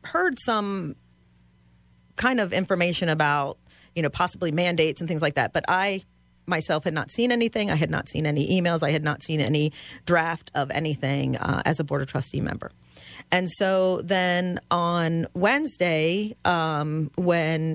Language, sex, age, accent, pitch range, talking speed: English, female, 40-59, American, 150-175 Hz, 165 wpm